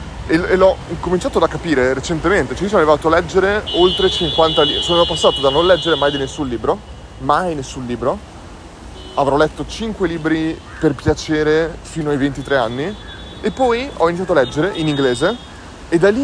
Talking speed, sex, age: 175 wpm, male, 20-39